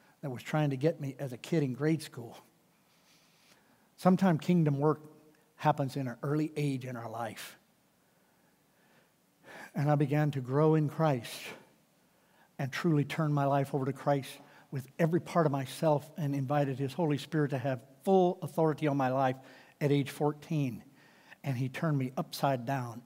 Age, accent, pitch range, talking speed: 60-79, American, 140-175 Hz, 165 wpm